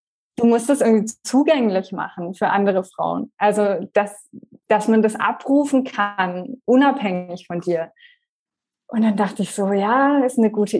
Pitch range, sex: 205-255 Hz, female